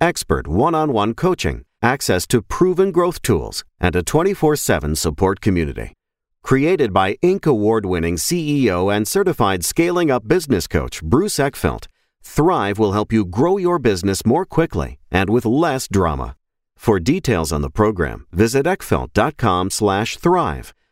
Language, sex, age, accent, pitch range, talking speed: English, male, 40-59, American, 95-140 Hz, 130 wpm